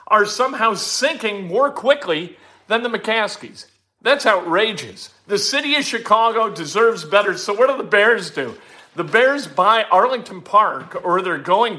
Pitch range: 150-210 Hz